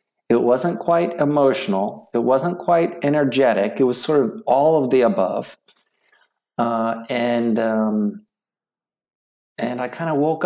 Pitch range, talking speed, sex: 105-130 Hz, 140 wpm, male